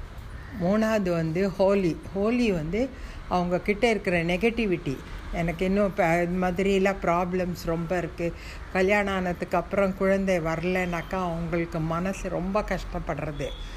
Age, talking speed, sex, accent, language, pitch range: 60-79, 105 wpm, female, native, Tamil, 160-195 Hz